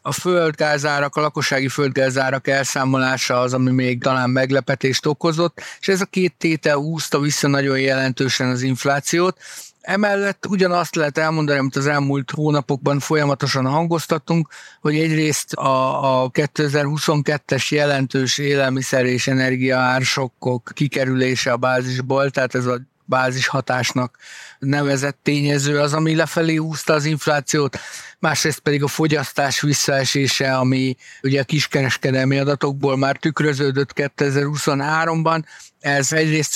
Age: 50-69